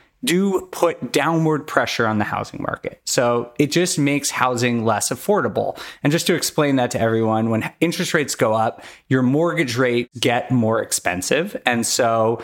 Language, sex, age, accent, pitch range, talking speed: English, male, 30-49, American, 115-145 Hz, 170 wpm